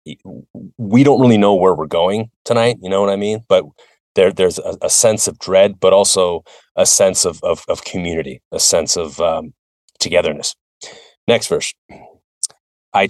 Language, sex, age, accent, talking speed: English, male, 30-49, American, 170 wpm